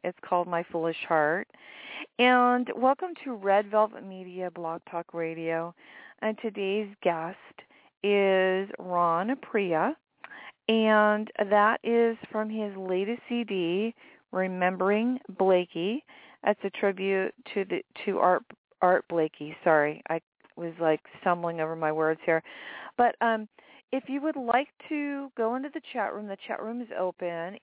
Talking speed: 140 wpm